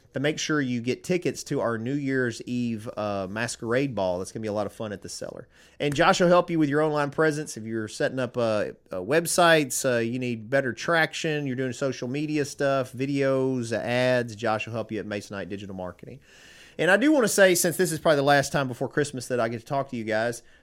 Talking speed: 245 wpm